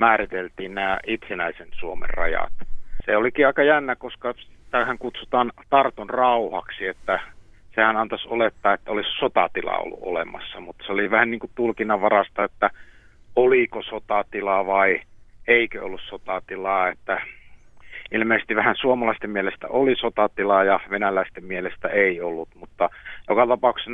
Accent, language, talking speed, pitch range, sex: native, Finnish, 130 wpm, 95-115 Hz, male